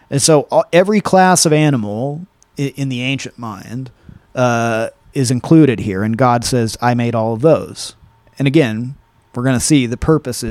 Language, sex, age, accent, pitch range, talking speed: English, male, 30-49, American, 115-140 Hz, 170 wpm